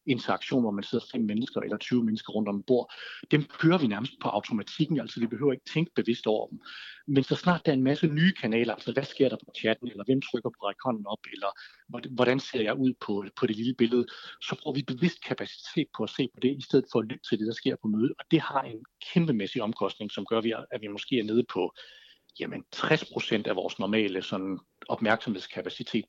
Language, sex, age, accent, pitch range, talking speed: Danish, male, 60-79, native, 110-145 Hz, 230 wpm